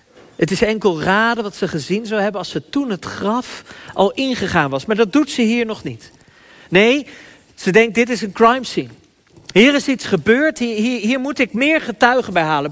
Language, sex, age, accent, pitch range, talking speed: Dutch, male, 40-59, Dutch, 145-215 Hz, 210 wpm